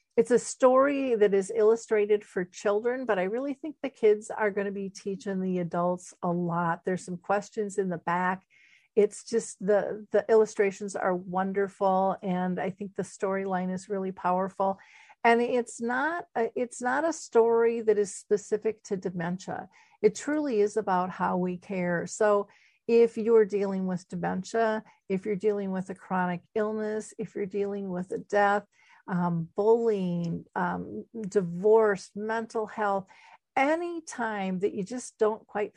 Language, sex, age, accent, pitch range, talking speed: English, female, 50-69, American, 185-225 Hz, 160 wpm